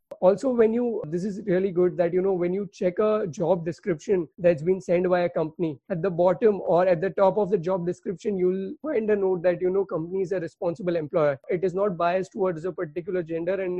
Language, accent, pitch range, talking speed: English, Indian, 175-215 Hz, 235 wpm